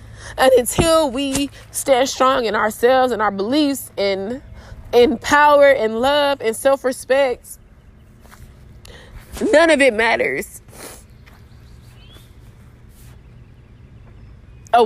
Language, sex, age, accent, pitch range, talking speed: English, female, 20-39, American, 215-275 Hz, 90 wpm